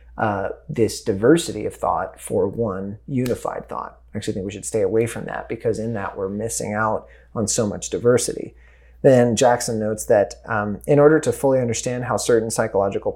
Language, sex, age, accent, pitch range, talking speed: English, male, 30-49, American, 100-125 Hz, 190 wpm